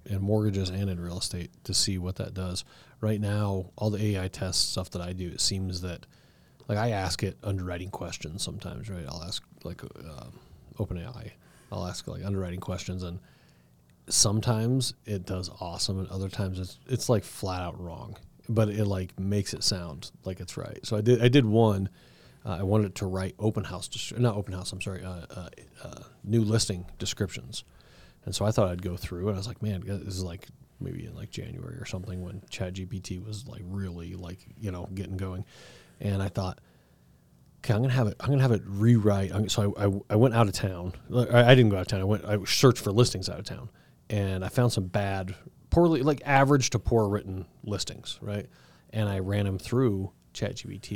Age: 30-49